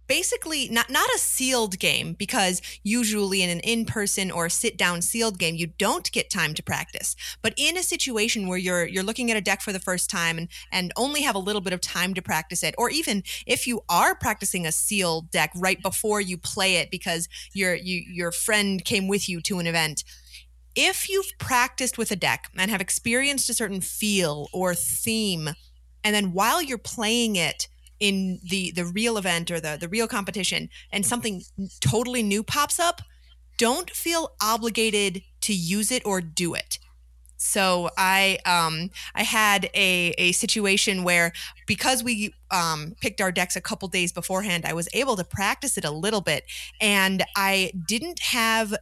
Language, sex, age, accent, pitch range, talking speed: English, female, 30-49, American, 175-225 Hz, 185 wpm